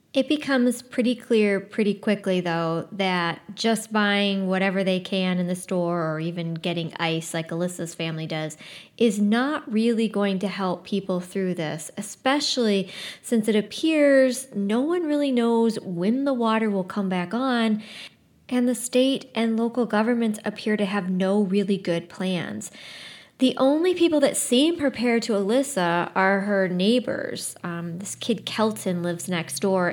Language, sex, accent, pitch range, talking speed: English, female, American, 185-235 Hz, 160 wpm